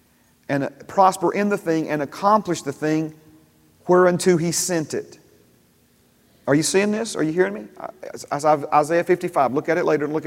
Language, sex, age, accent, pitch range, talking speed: English, male, 40-59, American, 160-205 Hz, 170 wpm